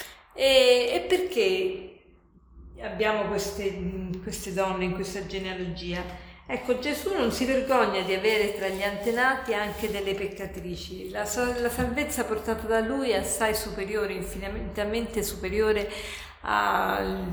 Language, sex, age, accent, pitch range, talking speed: Italian, female, 40-59, native, 195-230 Hz, 120 wpm